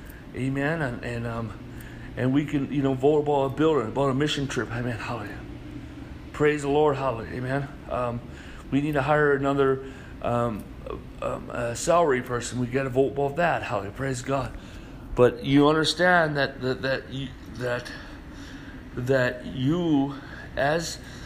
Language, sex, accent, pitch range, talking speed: English, male, American, 125-150 Hz, 160 wpm